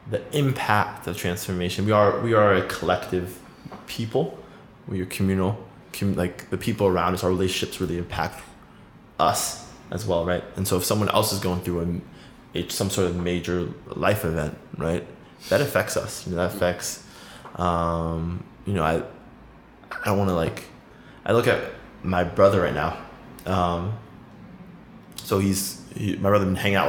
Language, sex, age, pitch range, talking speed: English, male, 20-39, 90-105 Hz, 165 wpm